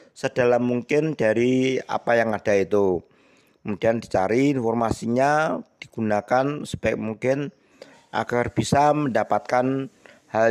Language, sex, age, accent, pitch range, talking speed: Indonesian, male, 50-69, native, 115-145 Hz, 95 wpm